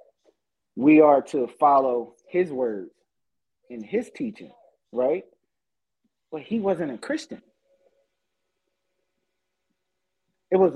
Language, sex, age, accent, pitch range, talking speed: English, male, 30-49, American, 140-200 Hz, 95 wpm